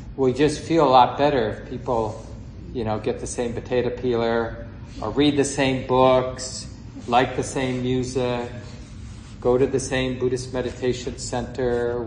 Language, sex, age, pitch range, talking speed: English, male, 40-59, 115-130 Hz, 160 wpm